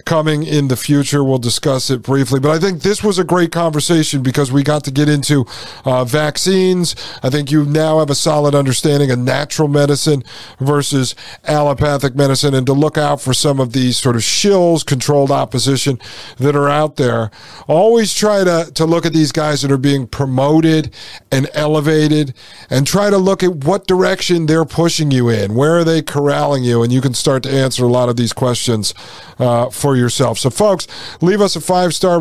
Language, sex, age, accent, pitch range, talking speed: English, male, 50-69, American, 135-155 Hz, 195 wpm